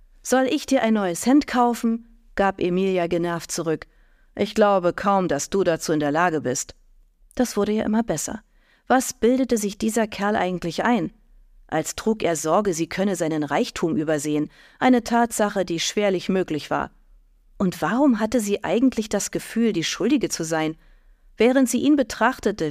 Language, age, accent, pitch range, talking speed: German, 40-59, German, 170-230 Hz, 165 wpm